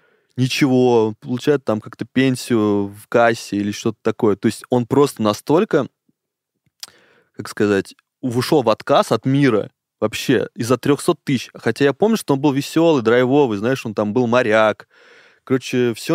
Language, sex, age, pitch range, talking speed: Russian, male, 20-39, 110-140 Hz, 150 wpm